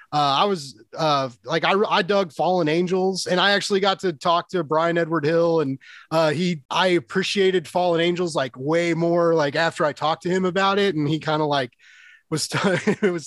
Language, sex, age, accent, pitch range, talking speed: English, male, 30-49, American, 150-190 Hz, 210 wpm